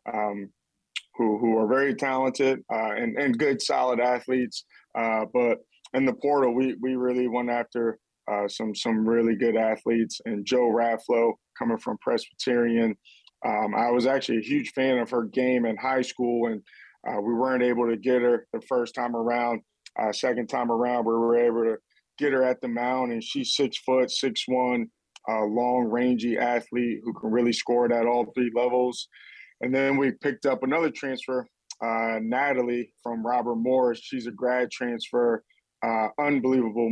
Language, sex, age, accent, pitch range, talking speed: English, male, 20-39, American, 115-125 Hz, 175 wpm